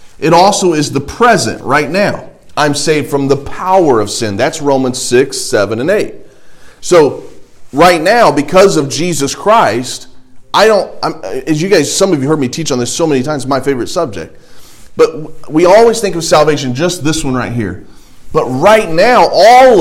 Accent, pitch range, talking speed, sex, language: American, 110-160 Hz, 185 wpm, male, English